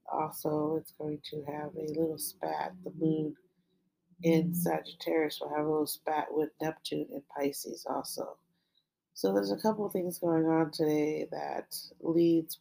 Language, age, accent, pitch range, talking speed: English, 30-49, American, 150-170 Hz, 155 wpm